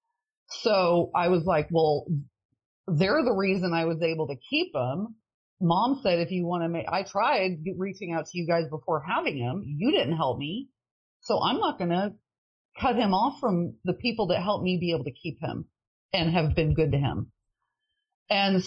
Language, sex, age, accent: English, female, 30-49, American